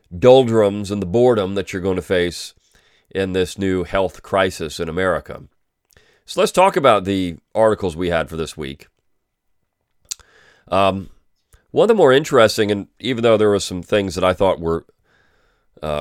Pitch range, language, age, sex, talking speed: 90-120 Hz, English, 40-59, male, 170 wpm